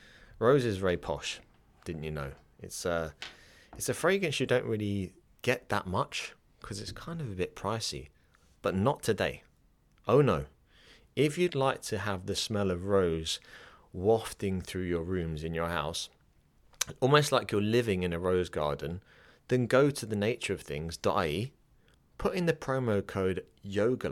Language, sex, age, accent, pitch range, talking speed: English, male, 30-49, British, 85-115 Hz, 160 wpm